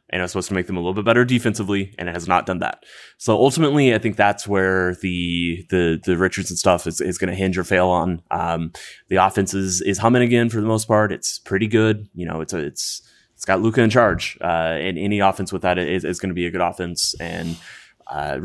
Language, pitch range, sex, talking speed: English, 90-110 Hz, male, 245 wpm